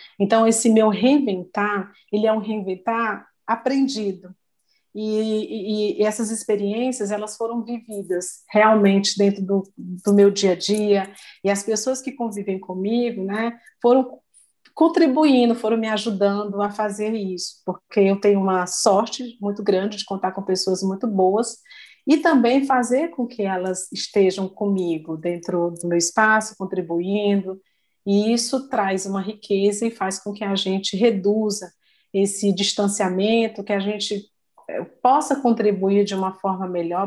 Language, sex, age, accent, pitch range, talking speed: Portuguese, female, 40-59, Brazilian, 195-230 Hz, 145 wpm